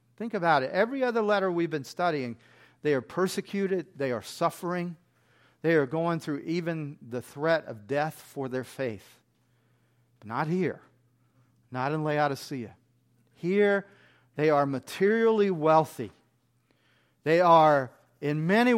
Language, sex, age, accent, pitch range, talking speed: English, male, 40-59, American, 120-170 Hz, 130 wpm